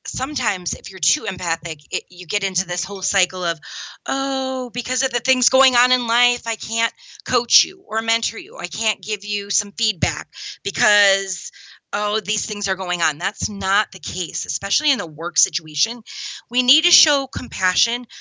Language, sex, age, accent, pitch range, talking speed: English, female, 30-49, American, 170-240 Hz, 185 wpm